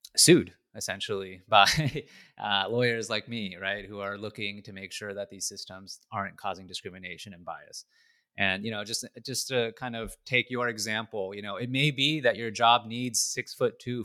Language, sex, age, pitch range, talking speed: English, male, 30-49, 105-130 Hz, 190 wpm